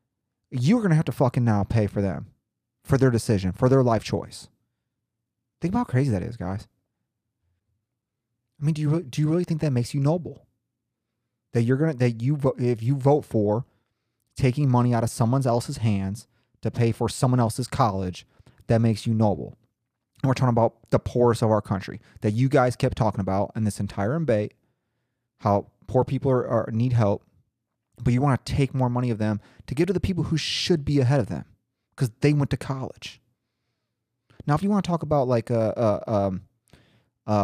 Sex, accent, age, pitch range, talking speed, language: male, American, 30-49, 110-130 Hz, 195 wpm, English